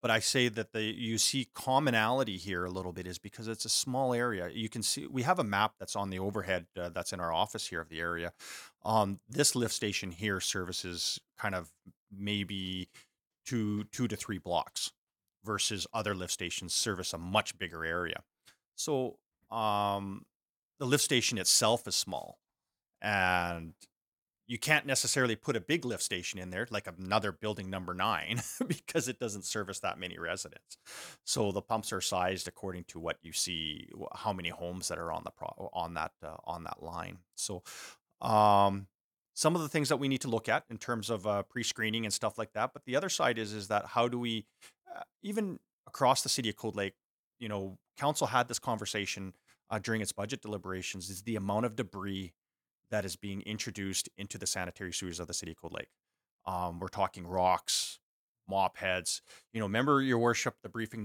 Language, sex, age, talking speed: English, male, 30-49, 195 wpm